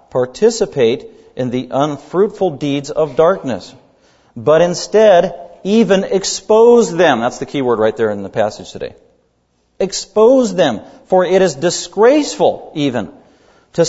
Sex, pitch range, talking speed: male, 130-190 Hz, 130 wpm